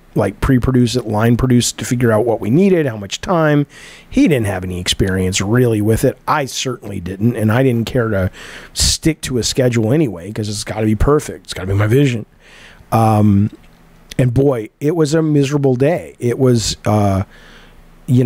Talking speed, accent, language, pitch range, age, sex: 195 wpm, American, English, 110-135 Hz, 40-59, male